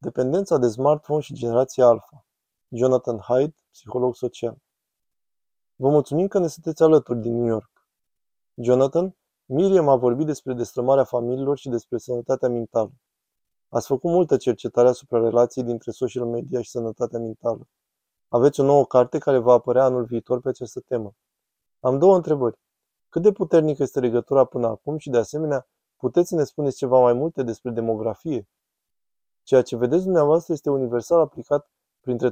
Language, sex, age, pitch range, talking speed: Romanian, male, 20-39, 120-145 Hz, 155 wpm